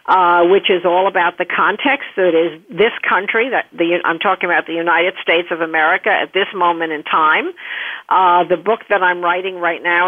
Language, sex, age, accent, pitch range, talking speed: English, female, 50-69, American, 175-235 Hz, 210 wpm